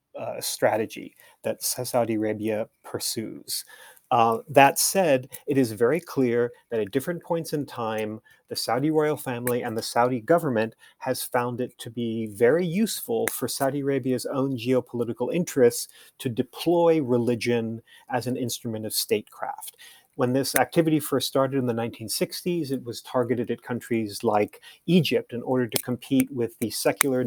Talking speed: 155 wpm